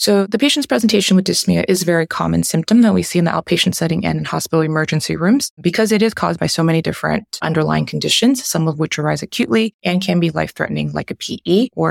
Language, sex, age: English, female, 20-39